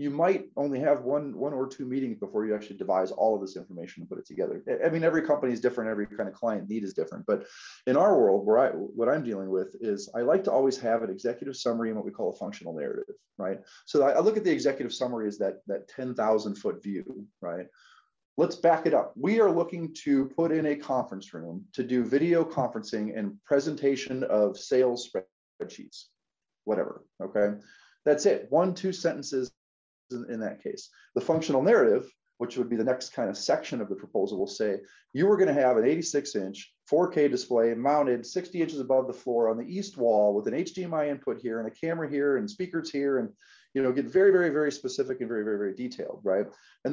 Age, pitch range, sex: 30-49, 115-165 Hz, male